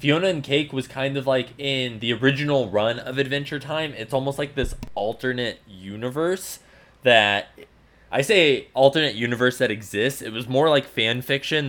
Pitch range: 110-135 Hz